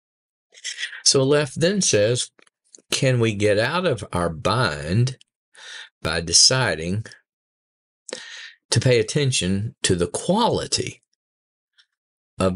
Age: 50-69